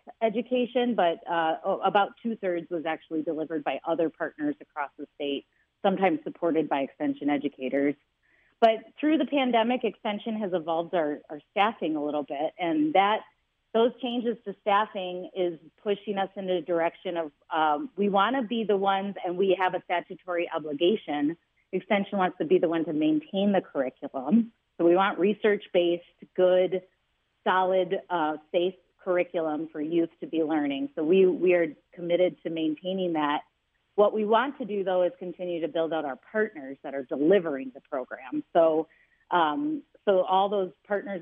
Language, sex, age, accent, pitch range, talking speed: English, female, 30-49, American, 160-200 Hz, 165 wpm